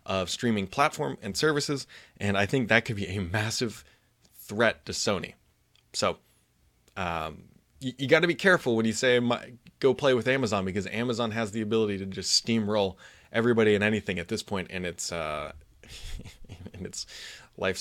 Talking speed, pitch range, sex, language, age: 175 wpm, 105-135 Hz, male, English, 20-39